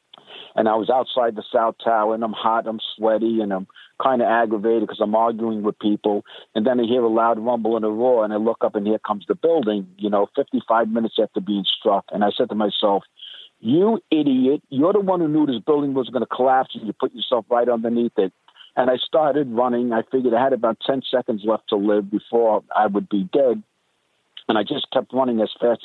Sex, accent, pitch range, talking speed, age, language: male, American, 110-125 Hz, 230 wpm, 50-69, English